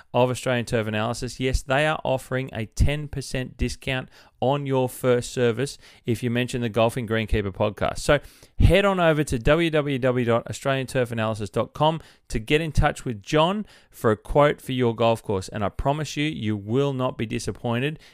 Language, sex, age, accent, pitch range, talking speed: English, male, 30-49, Australian, 115-155 Hz, 170 wpm